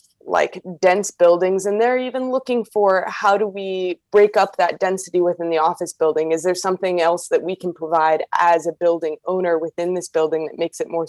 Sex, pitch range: female, 170-210 Hz